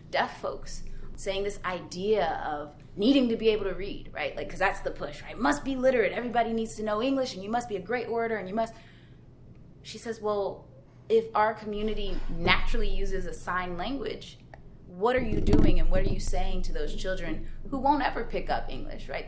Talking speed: 210 wpm